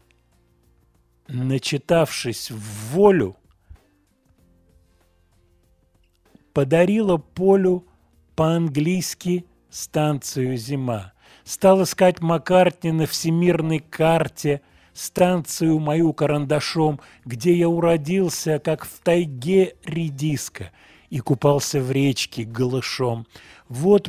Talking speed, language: 75 wpm, Russian